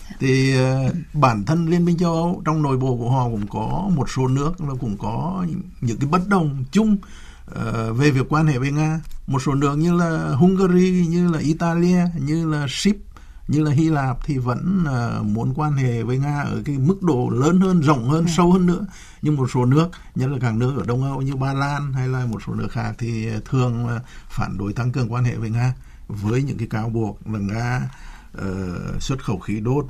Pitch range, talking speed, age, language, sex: 115-155 Hz, 225 wpm, 60-79, Vietnamese, male